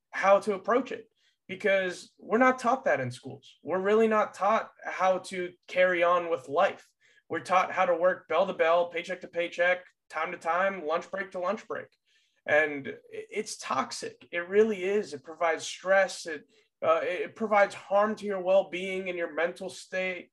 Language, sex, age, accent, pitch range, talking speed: English, male, 20-39, American, 150-205 Hz, 180 wpm